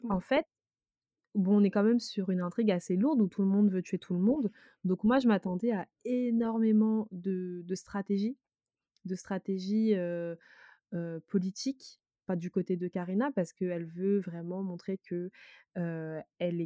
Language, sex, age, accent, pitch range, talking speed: French, female, 20-39, French, 175-205 Hz, 170 wpm